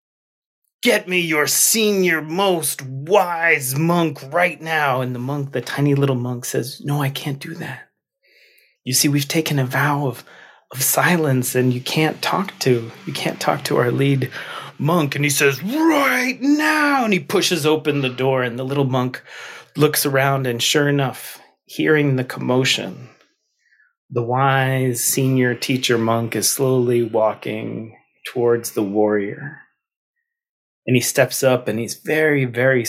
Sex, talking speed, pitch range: male, 155 wpm, 120-170 Hz